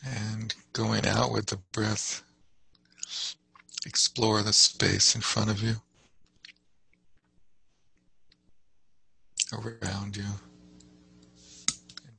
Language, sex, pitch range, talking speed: English, male, 70-110 Hz, 80 wpm